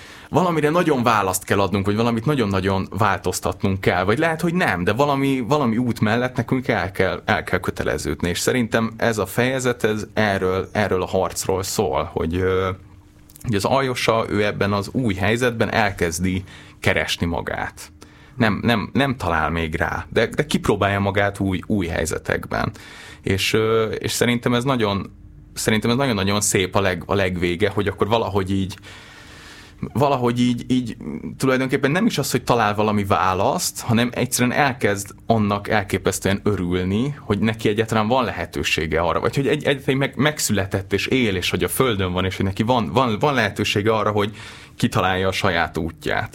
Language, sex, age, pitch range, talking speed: Hungarian, male, 30-49, 95-120 Hz, 165 wpm